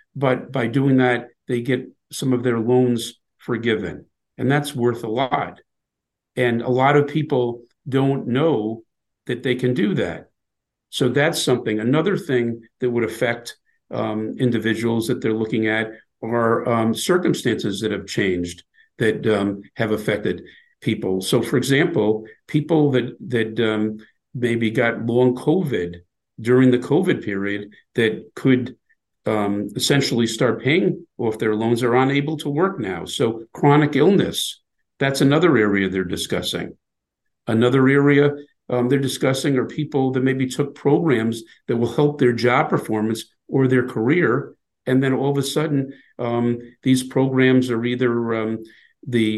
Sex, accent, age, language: male, American, 50-69, English